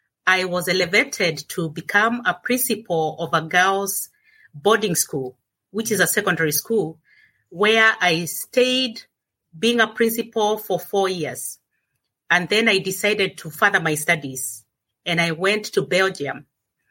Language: English